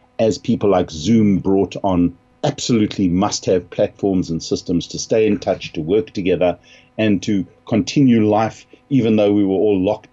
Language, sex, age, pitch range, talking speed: English, male, 50-69, 90-125 Hz, 170 wpm